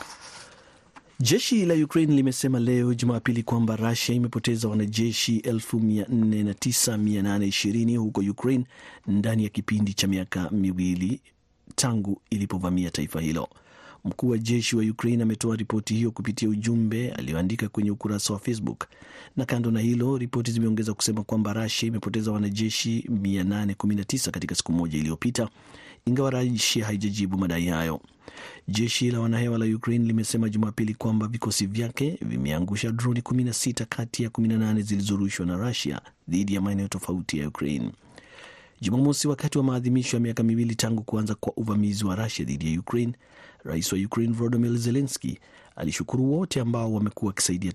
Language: Swahili